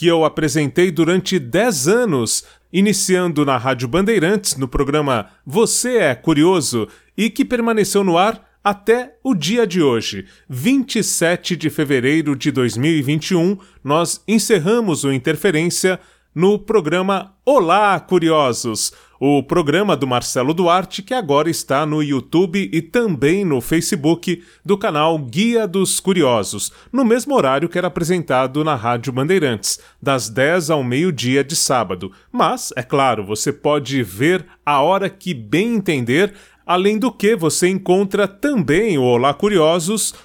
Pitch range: 145-200 Hz